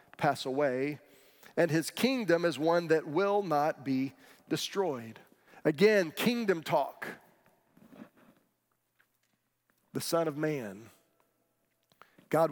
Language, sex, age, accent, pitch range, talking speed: English, male, 40-59, American, 155-205 Hz, 95 wpm